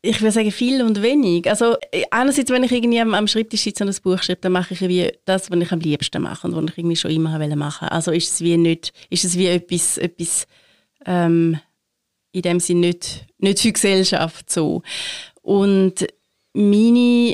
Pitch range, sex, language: 185-225 Hz, female, German